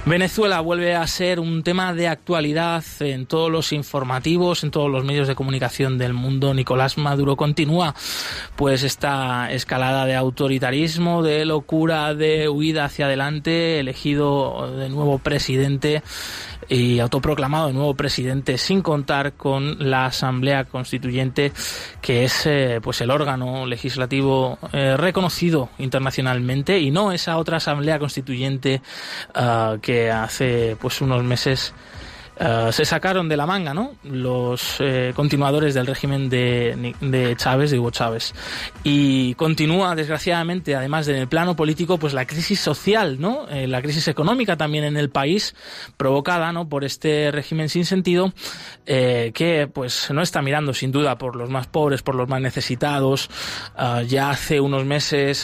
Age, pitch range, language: 20-39, 130-155 Hz, Spanish